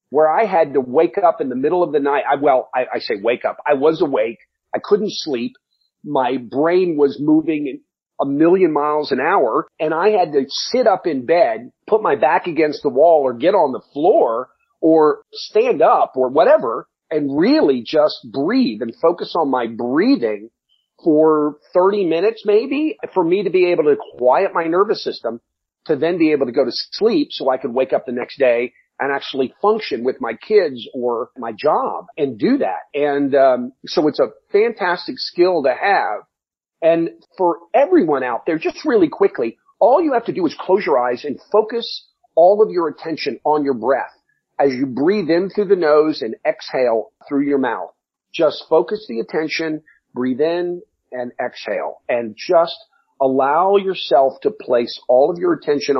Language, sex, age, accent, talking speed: English, male, 50-69, American, 185 wpm